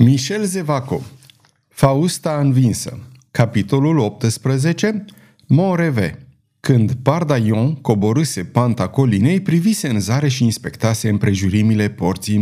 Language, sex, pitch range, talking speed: Romanian, male, 110-155 Hz, 90 wpm